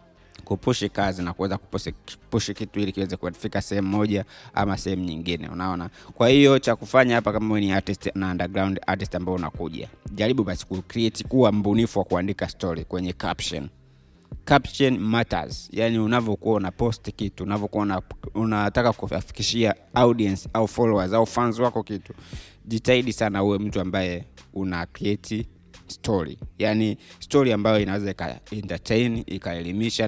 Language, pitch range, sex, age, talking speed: Swahili, 90-110 Hz, male, 30-49, 135 wpm